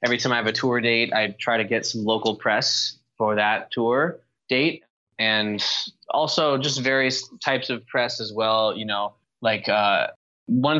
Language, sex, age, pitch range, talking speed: English, male, 20-39, 105-125 Hz, 180 wpm